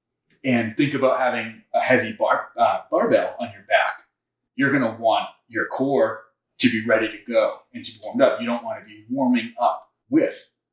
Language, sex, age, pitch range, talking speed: English, male, 30-49, 115-190 Hz, 195 wpm